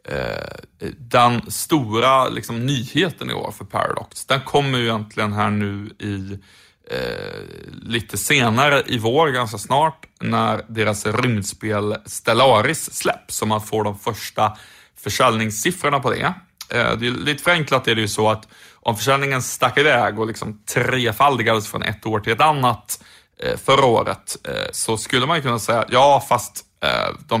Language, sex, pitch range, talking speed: Swedish, male, 110-125 Hz, 160 wpm